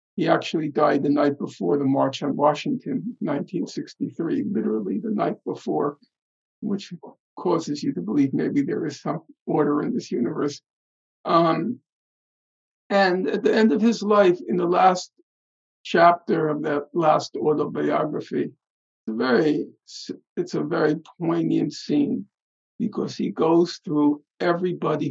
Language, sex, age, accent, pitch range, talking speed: English, male, 50-69, American, 145-195 Hz, 130 wpm